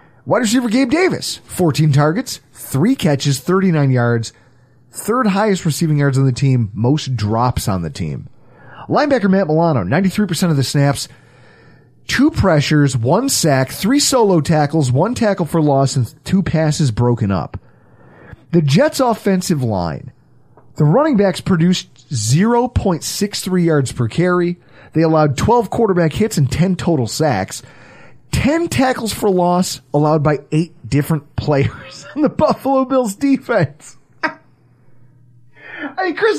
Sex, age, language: male, 30-49, English